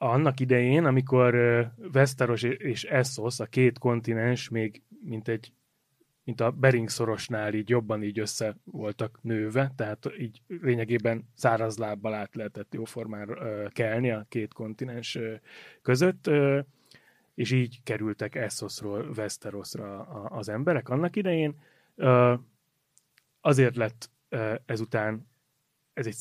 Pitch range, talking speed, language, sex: 110-135 Hz, 110 wpm, Hungarian, male